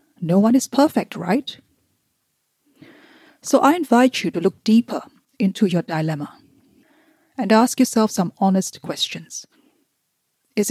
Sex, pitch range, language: female, 185-240 Hz, English